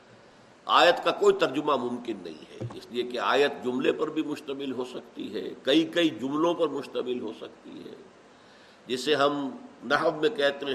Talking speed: 175 wpm